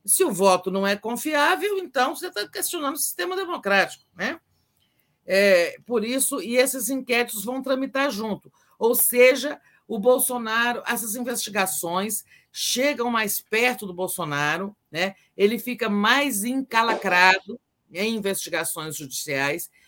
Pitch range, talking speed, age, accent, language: 175-245 Hz, 125 wpm, 50-69, Brazilian, Portuguese